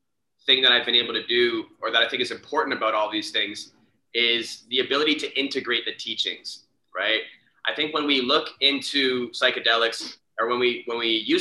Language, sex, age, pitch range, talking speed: English, male, 20-39, 125-155 Hz, 200 wpm